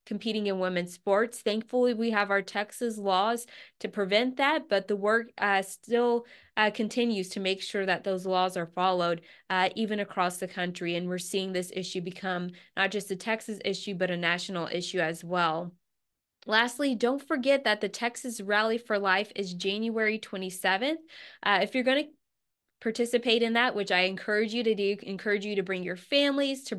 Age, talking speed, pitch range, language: 20-39, 185 wpm, 185-225 Hz, English